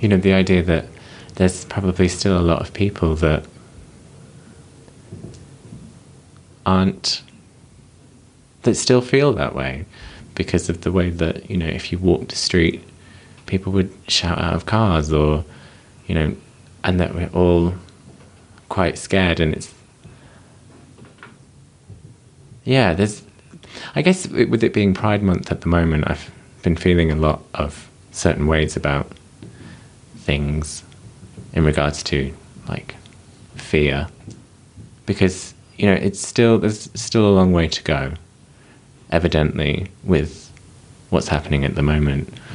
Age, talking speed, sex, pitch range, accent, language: 20-39, 135 wpm, male, 80-110 Hz, British, English